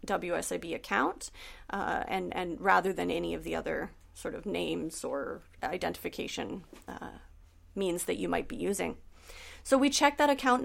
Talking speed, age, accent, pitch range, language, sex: 160 wpm, 30-49, American, 195-250 Hz, English, female